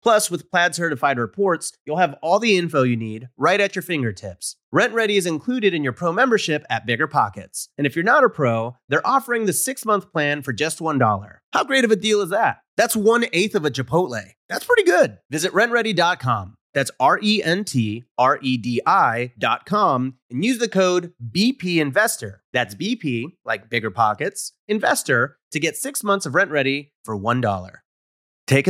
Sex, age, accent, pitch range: male, 30-49, American, 120-185 Hz